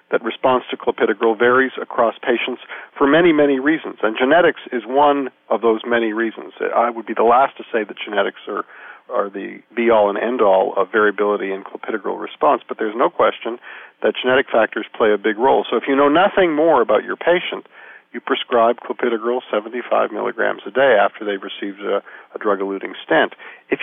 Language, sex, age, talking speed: English, male, 50-69, 185 wpm